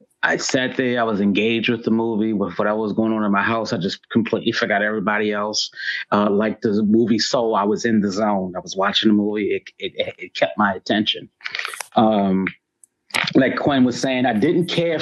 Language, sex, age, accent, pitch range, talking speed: English, male, 30-49, American, 105-125 Hz, 210 wpm